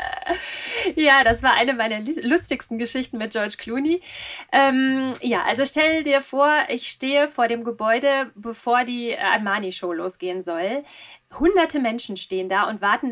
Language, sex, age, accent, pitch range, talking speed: German, female, 20-39, German, 200-265 Hz, 145 wpm